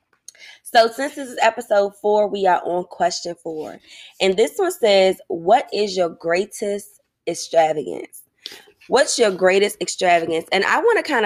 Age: 20-39